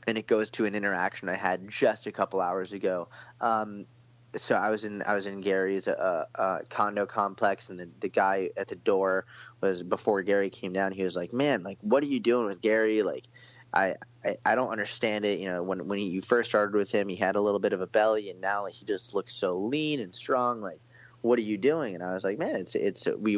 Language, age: English, 20-39